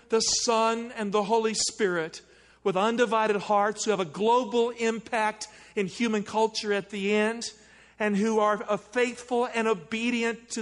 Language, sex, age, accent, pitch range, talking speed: English, male, 50-69, American, 165-215 Hz, 155 wpm